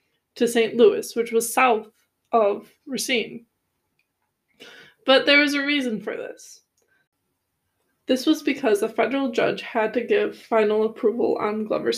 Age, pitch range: 20-39, 225-280 Hz